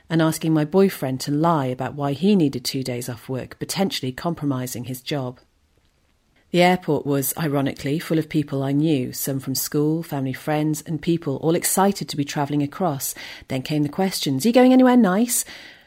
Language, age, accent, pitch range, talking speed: English, 40-59, British, 135-170 Hz, 185 wpm